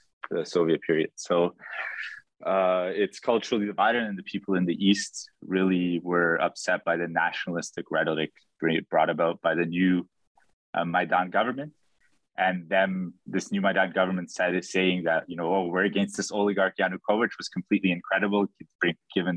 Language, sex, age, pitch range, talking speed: English, male, 20-39, 85-100 Hz, 160 wpm